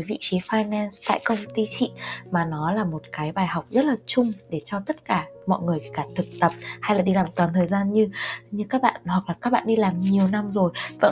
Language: Vietnamese